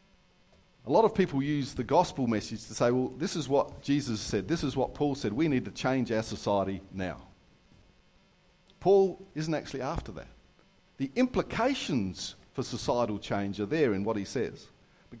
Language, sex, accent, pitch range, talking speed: English, male, Australian, 110-155 Hz, 180 wpm